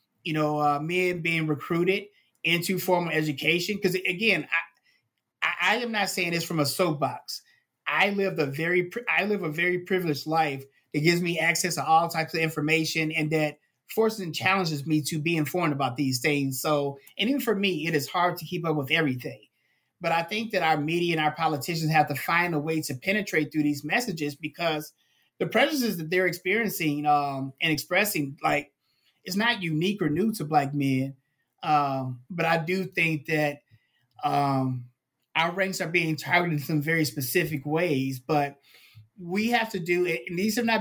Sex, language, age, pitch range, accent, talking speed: male, English, 30-49, 150-180 Hz, American, 190 wpm